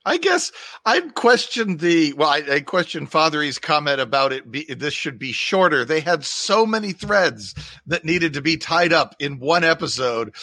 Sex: male